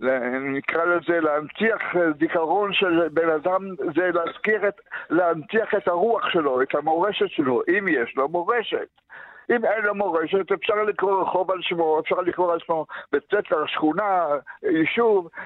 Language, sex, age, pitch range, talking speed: Hebrew, male, 60-79, 170-210 Hz, 140 wpm